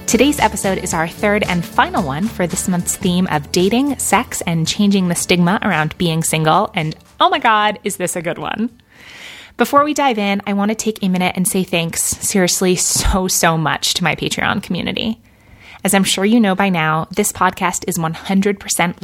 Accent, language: American, English